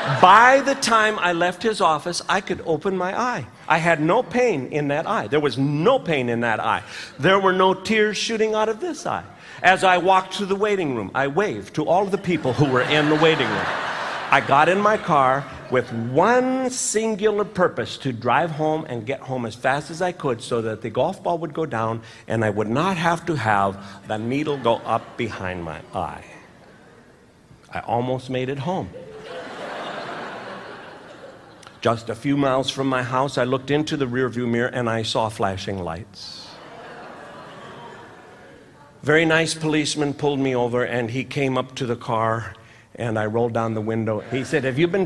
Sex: male